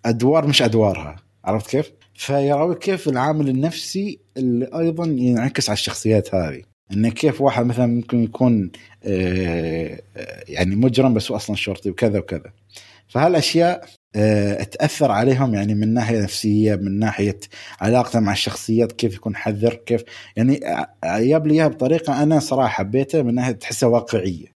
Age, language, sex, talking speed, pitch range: 20-39, Arabic, male, 130 wpm, 100-130 Hz